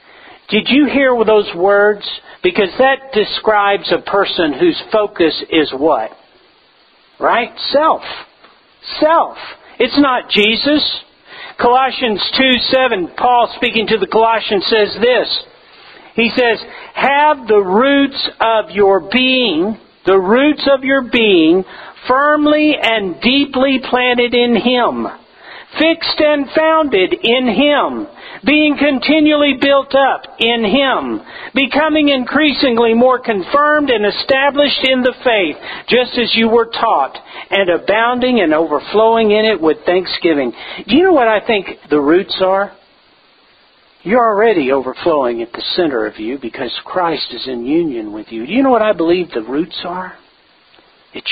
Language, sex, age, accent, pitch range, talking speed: English, male, 50-69, American, 215-285 Hz, 135 wpm